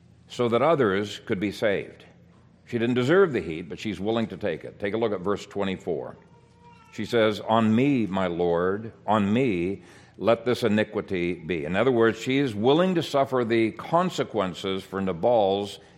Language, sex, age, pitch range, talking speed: English, male, 60-79, 95-120 Hz, 175 wpm